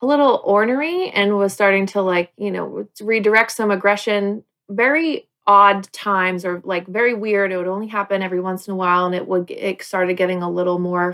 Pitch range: 185-220 Hz